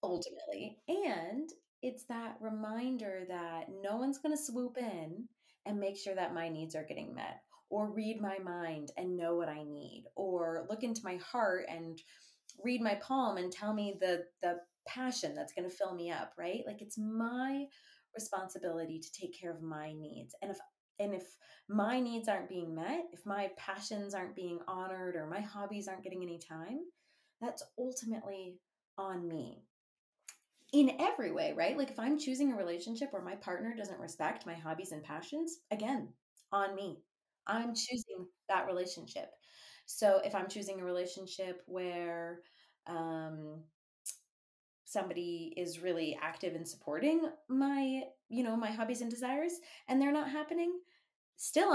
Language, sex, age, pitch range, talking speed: English, female, 20-39, 175-245 Hz, 160 wpm